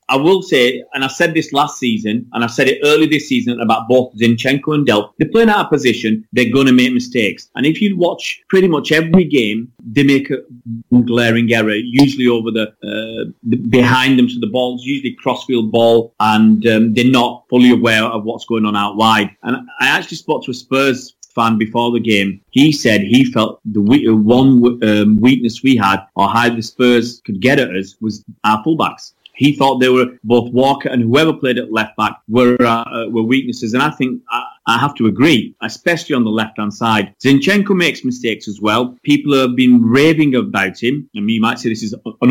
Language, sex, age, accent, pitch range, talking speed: English, male, 30-49, British, 110-135 Hz, 210 wpm